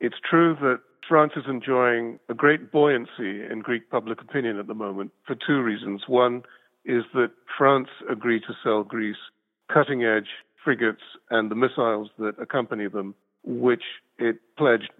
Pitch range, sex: 105-125 Hz, male